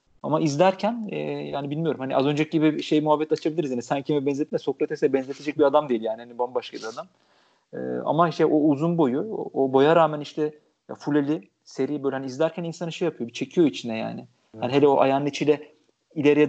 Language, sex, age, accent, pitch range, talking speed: Turkish, male, 40-59, native, 135-165 Hz, 205 wpm